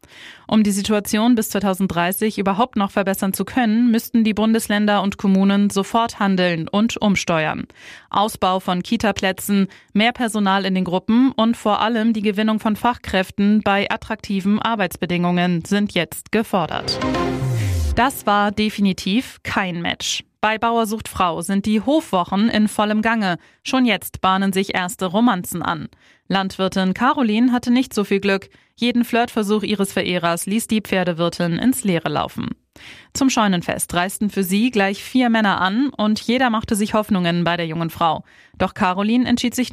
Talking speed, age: 150 wpm, 20-39